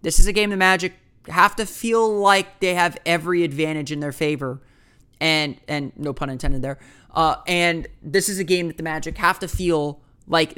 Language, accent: English, American